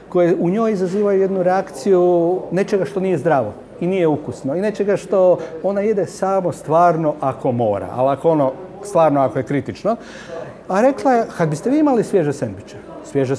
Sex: male